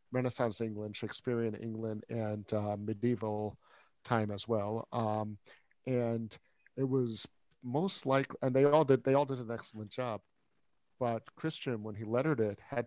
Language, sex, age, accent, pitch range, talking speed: English, male, 50-69, American, 105-120 Hz, 155 wpm